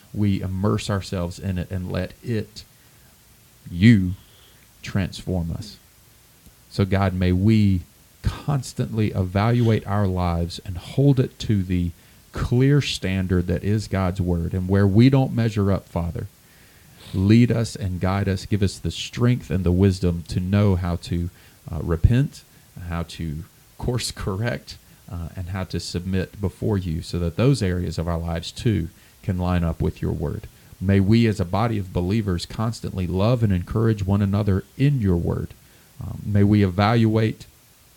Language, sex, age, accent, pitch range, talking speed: English, male, 30-49, American, 90-110 Hz, 160 wpm